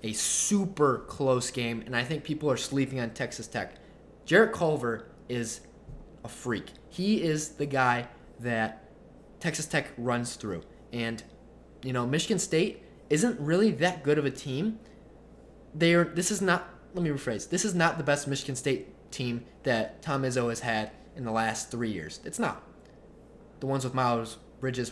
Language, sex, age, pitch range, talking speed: English, male, 20-39, 115-145 Hz, 170 wpm